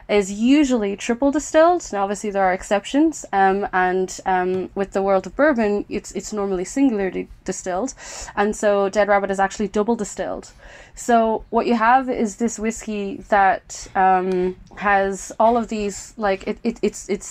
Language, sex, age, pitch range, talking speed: English, female, 20-39, 185-220 Hz, 165 wpm